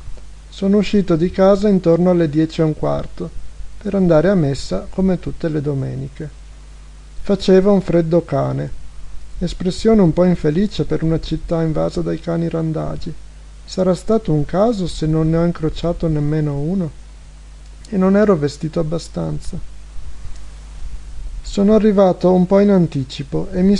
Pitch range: 140-185 Hz